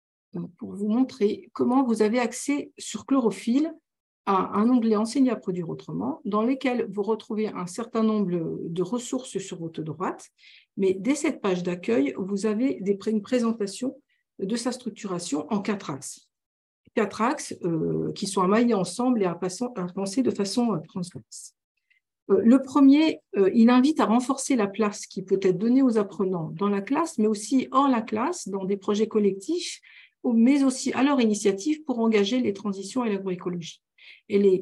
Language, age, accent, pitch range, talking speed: French, 50-69, French, 190-250 Hz, 170 wpm